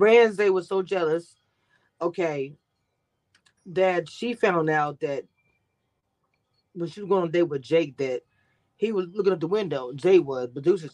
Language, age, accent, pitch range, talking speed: English, 20-39, American, 150-210 Hz, 160 wpm